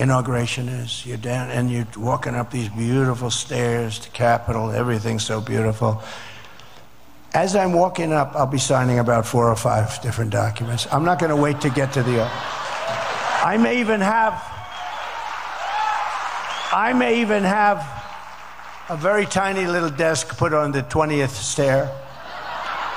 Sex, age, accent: male, 60-79, American